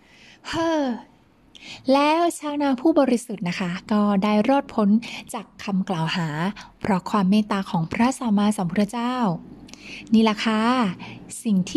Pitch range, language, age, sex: 190-245 Hz, Thai, 20-39, female